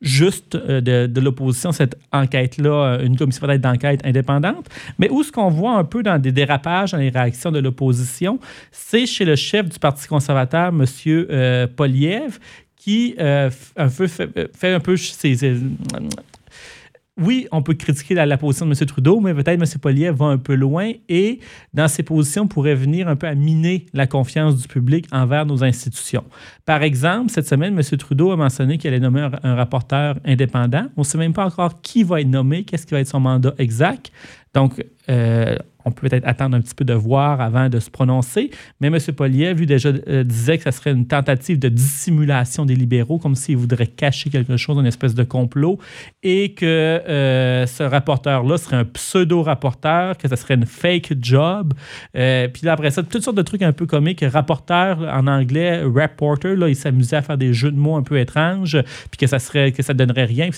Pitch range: 130-165 Hz